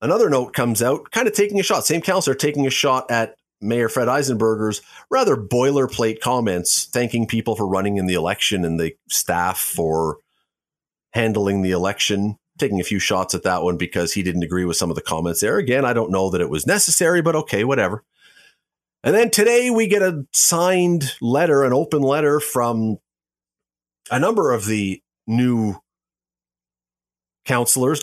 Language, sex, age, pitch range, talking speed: English, male, 40-59, 95-155 Hz, 175 wpm